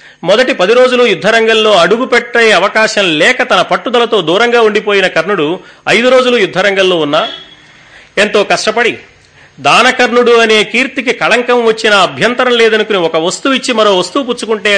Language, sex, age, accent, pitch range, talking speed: Telugu, male, 40-59, native, 175-230 Hz, 130 wpm